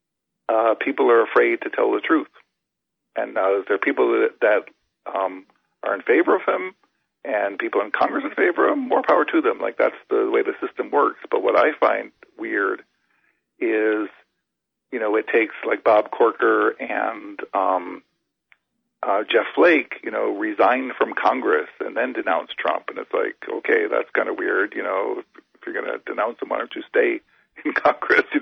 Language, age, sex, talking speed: English, 50-69, male, 190 wpm